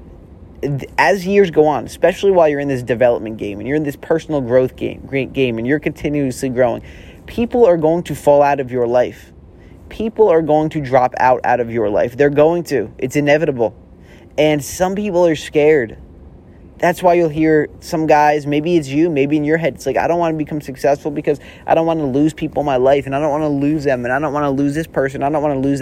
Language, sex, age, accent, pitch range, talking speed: English, male, 20-39, American, 120-155 Hz, 240 wpm